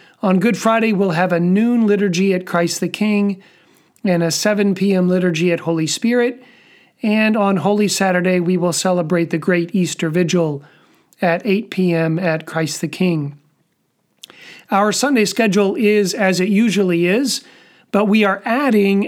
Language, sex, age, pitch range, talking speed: English, male, 40-59, 170-200 Hz, 155 wpm